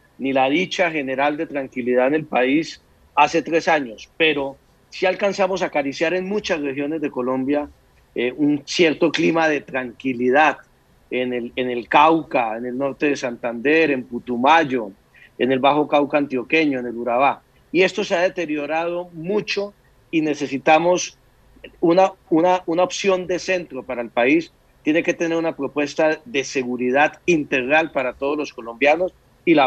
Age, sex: 40-59, male